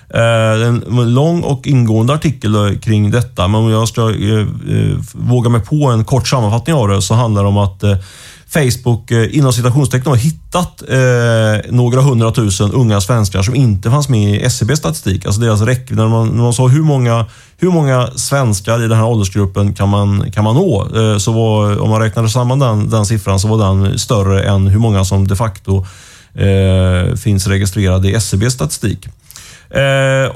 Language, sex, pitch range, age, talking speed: Swedish, male, 105-130 Hz, 30-49, 185 wpm